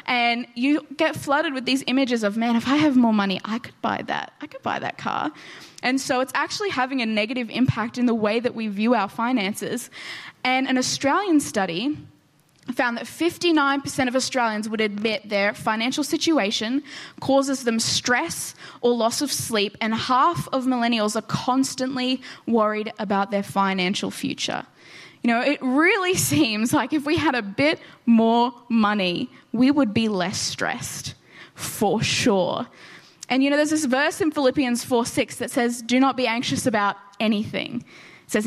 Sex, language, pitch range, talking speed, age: female, English, 225-280 Hz, 175 wpm, 10-29